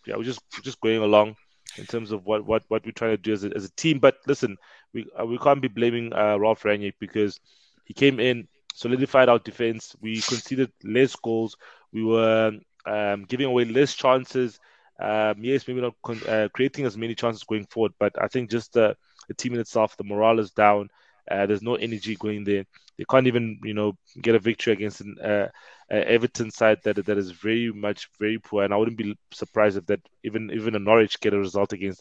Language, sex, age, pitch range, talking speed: English, male, 20-39, 110-130 Hz, 220 wpm